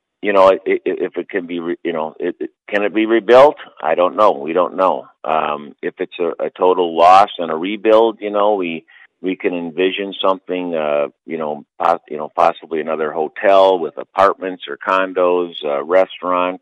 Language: English